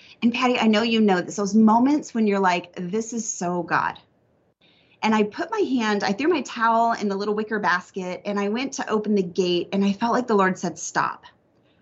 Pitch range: 175-215 Hz